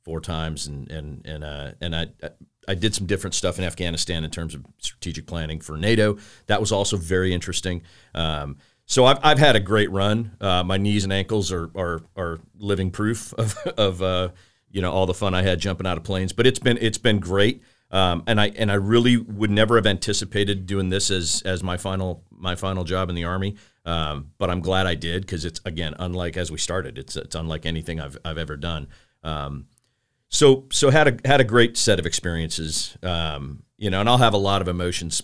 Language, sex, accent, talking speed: English, male, American, 220 wpm